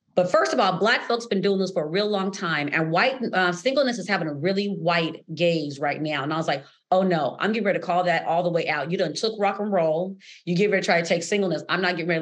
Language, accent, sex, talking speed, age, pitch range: English, American, female, 295 wpm, 40-59, 170-215 Hz